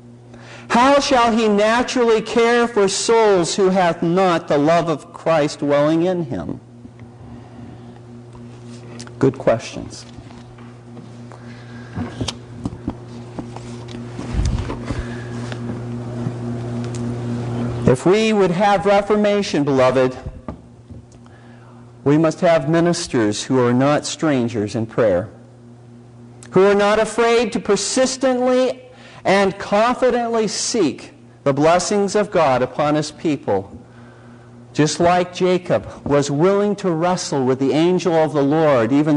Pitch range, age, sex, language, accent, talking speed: 120-200 Hz, 50-69, male, English, American, 100 wpm